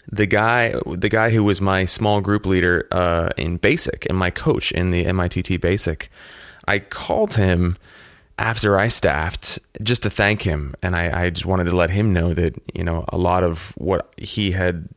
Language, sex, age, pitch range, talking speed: English, male, 20-39, 85-100 Hz, 195 wpm